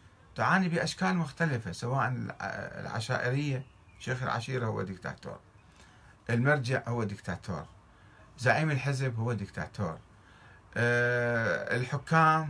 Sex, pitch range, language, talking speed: male, 105-145 Hz, Arabic, 80 wpm